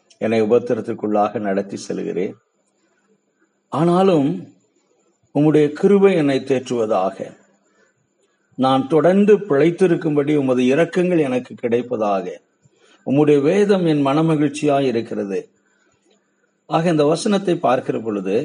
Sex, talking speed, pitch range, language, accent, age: male, 80 wpm, 120-155 Hz, Tamil, native, 50-69